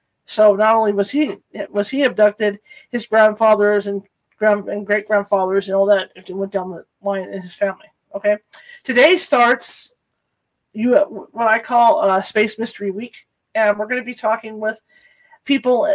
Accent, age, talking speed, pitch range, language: American, 50-69, 170 wpm, 200-250 Hz, English